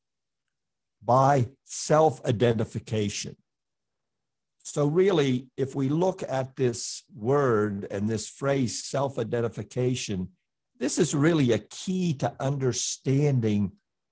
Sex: male